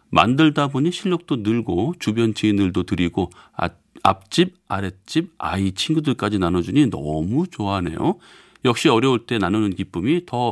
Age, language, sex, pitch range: 40-59, Korean, male, 100-145 Hz